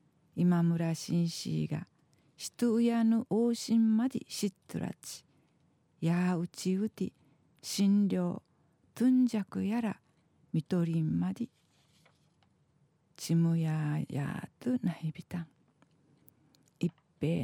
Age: 50-69